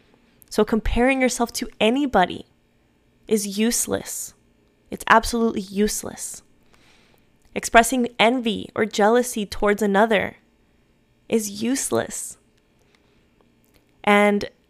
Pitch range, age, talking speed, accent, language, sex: 185-220 Hz, 10-29, 80 wpm, American, English, female